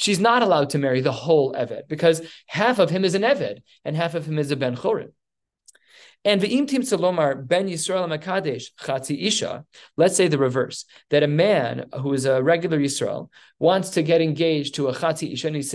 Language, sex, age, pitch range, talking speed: English, male, 20-39, 140-170 Hz, 200 wpm